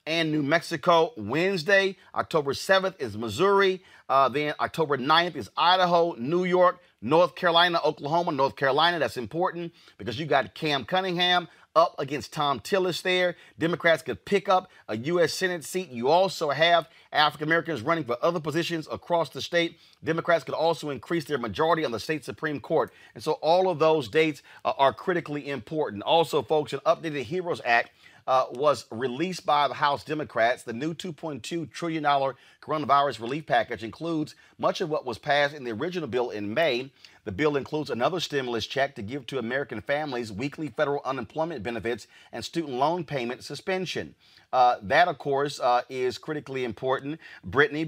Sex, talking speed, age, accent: male, 170 wpm, 30-49, American